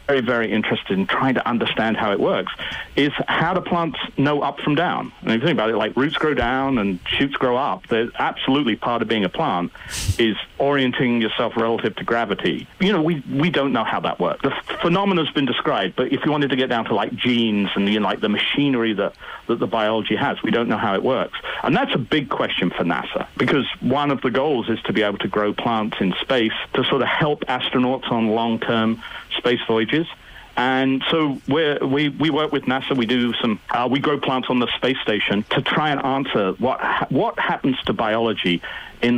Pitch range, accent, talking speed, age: 115-145 Hz, British, 225 wpm, 40-59